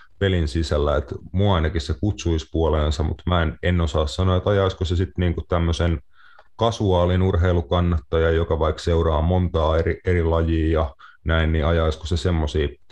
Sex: male